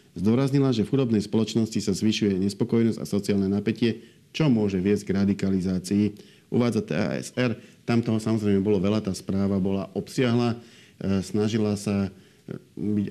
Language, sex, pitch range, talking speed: Slovak, male, 95-110 Hz, 135 wpm